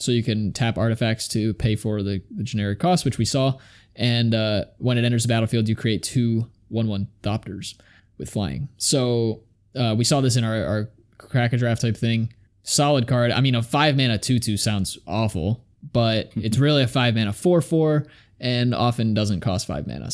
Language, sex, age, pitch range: English, male, 20-39, 105-130 Hz